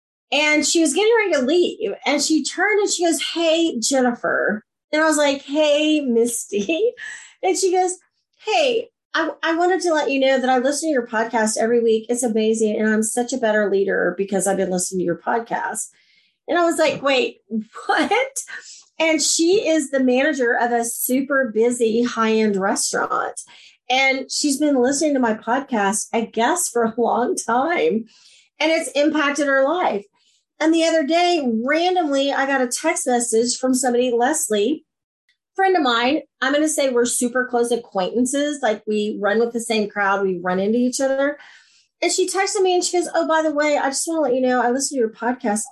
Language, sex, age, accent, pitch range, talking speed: English, female, 40-59, American, 230-330 Hz, 195 wpm